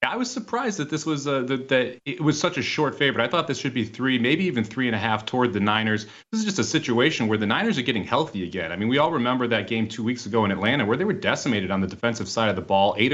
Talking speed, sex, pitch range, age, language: 290 wpm, male, 110-150 Hz, 30-49, English